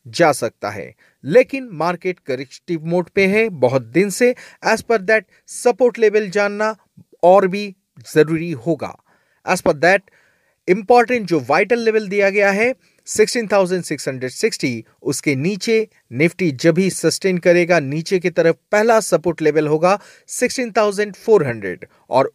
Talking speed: 130 wpm